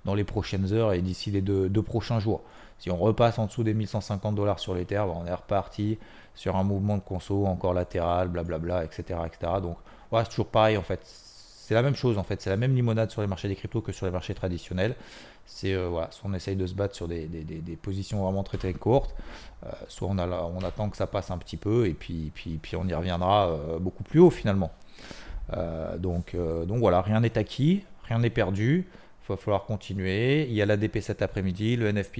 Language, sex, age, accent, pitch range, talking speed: French, male, 30-49, French, 95-110 Hz, 245 wpm